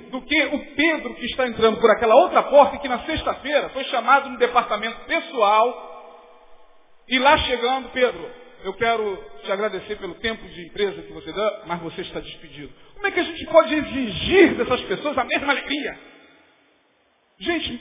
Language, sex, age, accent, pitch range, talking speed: English, male, 40-59, Brazilian, 240-300 Hz, 170 wpm